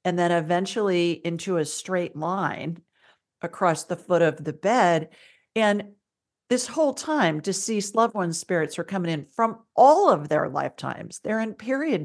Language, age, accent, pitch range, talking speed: English, 50-69, American, 160-220 Hz, 160 wpm